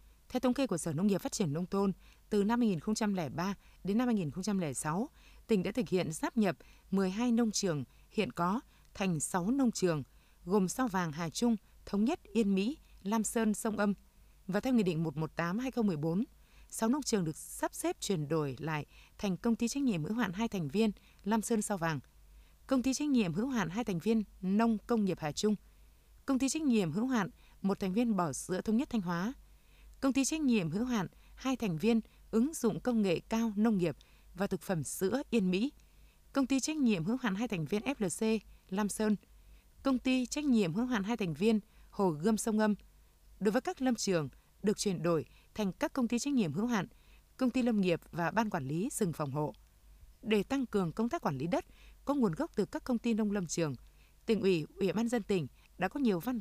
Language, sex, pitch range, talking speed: Vietnamese, female, 180-240 Hz, 215 wpm